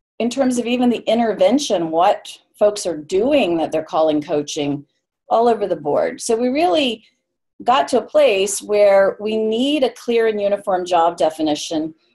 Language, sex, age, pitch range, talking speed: English, female, 40-59, 180-230 Hz, 170 wpm